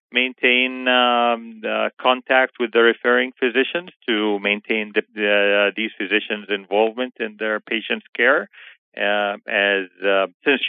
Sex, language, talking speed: male, English, 135 wpm